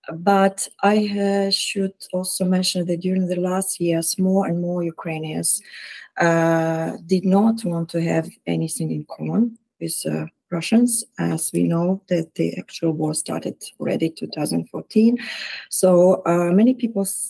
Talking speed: 145 wpm